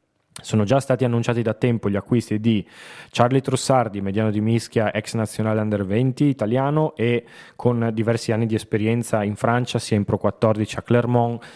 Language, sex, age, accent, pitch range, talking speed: Italian, male, 20-39, native, 105-125 Hz, 170 wpm